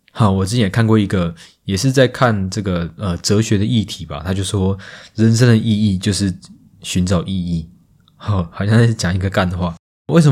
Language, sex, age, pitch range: Chinese, male, 20-39, 90-110 Hz